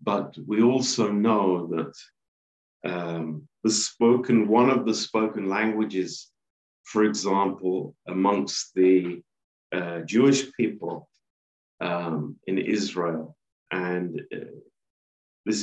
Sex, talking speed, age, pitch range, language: male, 100 wpm, 50-69, 85-110 Hz, Romanian